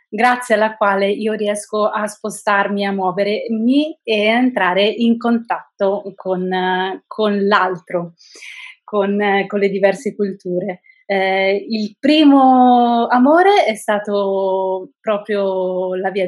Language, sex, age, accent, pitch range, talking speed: Italian, female, 20-39, native, 195-225 Hz, 115 wpm